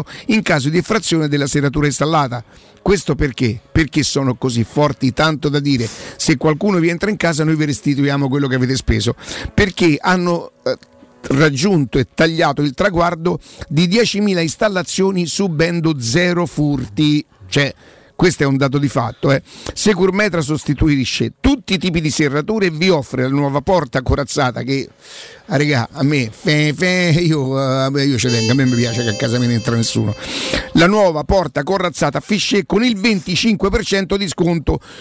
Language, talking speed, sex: Italian, 160 wpm, male